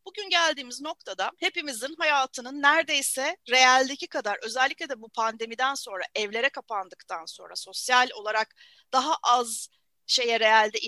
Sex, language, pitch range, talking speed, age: female, Turkish, 230-330 Hz, 120 wpm, 40-59